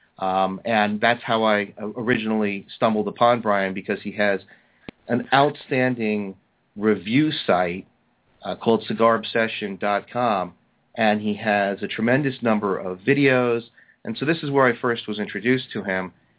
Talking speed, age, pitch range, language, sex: 140 wpm, 40-59, 105-125 Hz, English, male